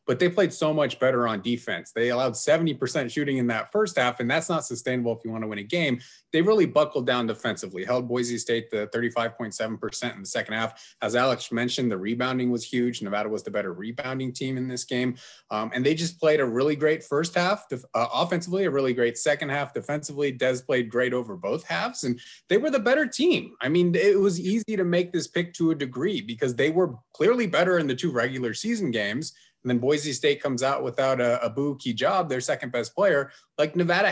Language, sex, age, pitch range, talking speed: English, male, 30-49, 120-165 Hz, 220 wpm